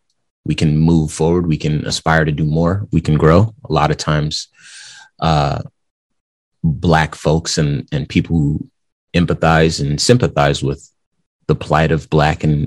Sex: male